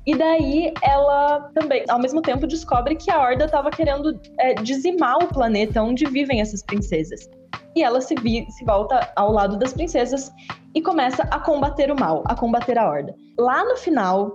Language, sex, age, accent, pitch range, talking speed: Portuguese, female, 10-29, Brazilian, 245-315 Hz, 185 wpm